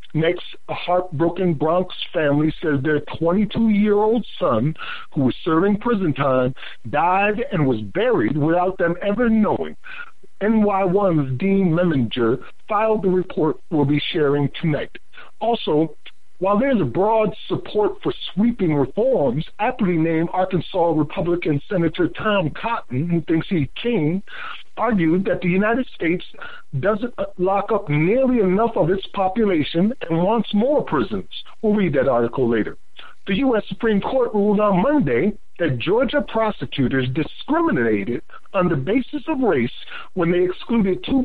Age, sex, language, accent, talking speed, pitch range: 60-79, male, English, American, 135 wpm, 160-225 Hz